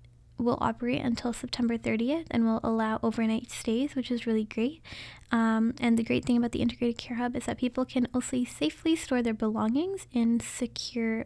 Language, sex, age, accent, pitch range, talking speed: English, female, 10-29, American, 225-255 Hz, 185 wpm